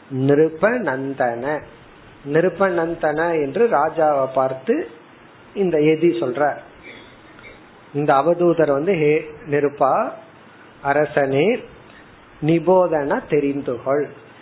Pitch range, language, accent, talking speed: 145-190 Hz, Tamil, native, 60 wpm